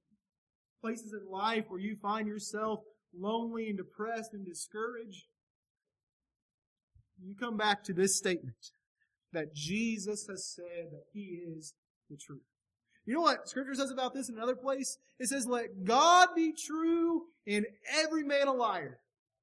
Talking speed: 150 wpm